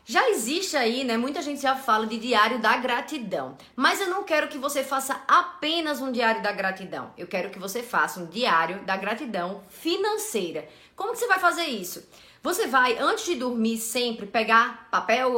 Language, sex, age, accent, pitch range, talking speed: Portuguese, female, 20-39, Brazilian, 225-310 Hz, 185 wpm